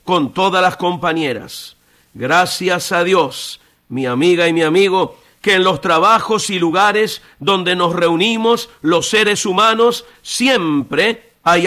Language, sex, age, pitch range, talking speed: Spanish, male, 50-69, 170-220 Hz, 135 wpm